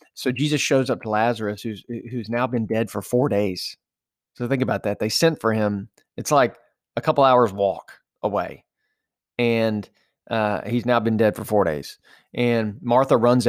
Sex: male